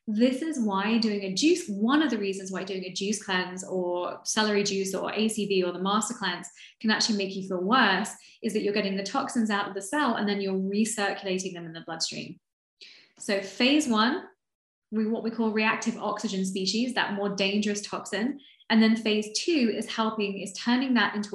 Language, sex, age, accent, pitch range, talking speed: English, female, 20-39, British, 195-230 Hz, 200 wpm